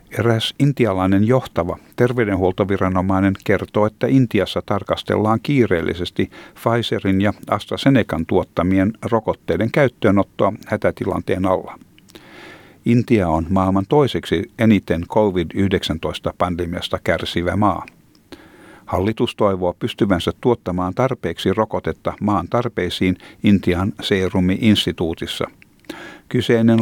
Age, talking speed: 60-79, 80 wpm